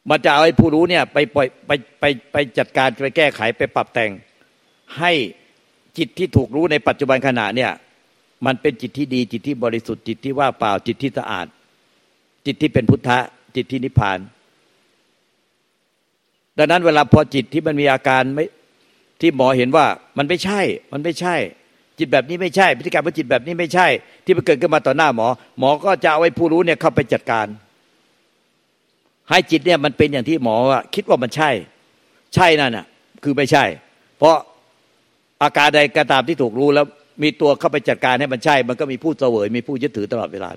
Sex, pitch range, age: male, 130-165 Hz, 60-79